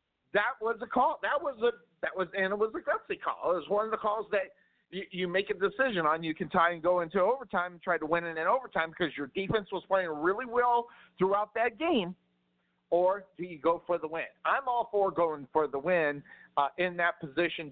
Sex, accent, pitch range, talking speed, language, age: male, American, 150-205 Hz, 235 wpm, English, 50-69